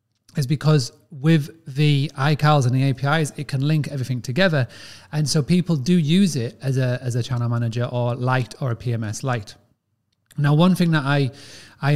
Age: 30-49